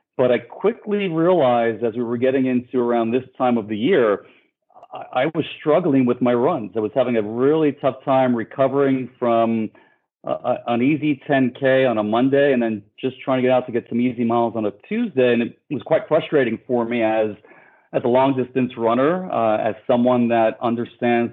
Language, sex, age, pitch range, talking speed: English, male, 40-59, 110-135 Hz, 190 wpm